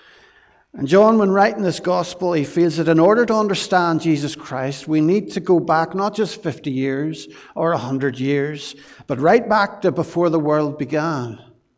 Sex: male